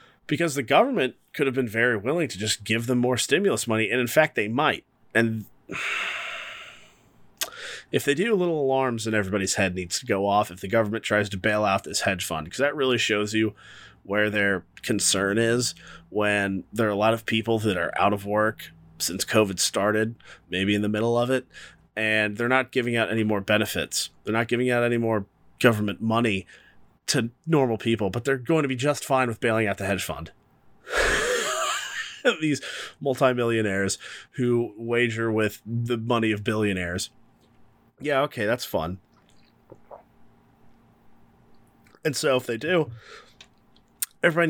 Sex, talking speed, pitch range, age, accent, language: male, 165 wpm, 105-130 Hz, 30-49, American, English